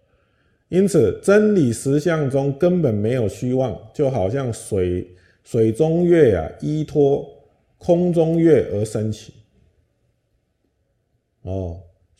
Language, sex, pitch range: Chinese, male, 105-155 Hz